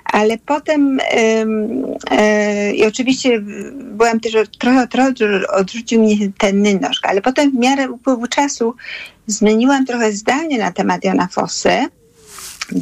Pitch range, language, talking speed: 190-230 Hz, Polish, 115 wpm